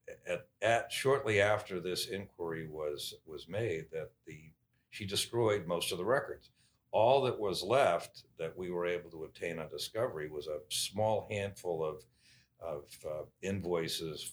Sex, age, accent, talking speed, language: male, 60-79, American, 155 wpm, English